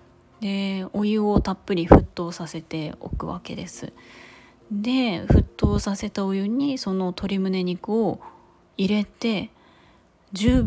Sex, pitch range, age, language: female, 175-215 Hz, 20-39, Japanese